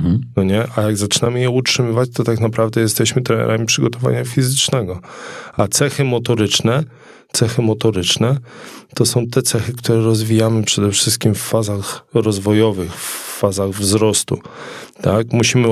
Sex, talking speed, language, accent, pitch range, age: male, 120 wpm, Polish, native, 100-115 Hz, 20-39